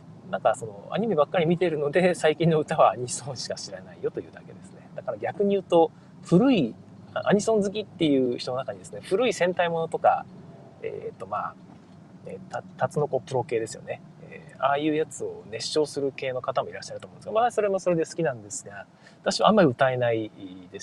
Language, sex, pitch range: Japanese, male, 135-195 Hz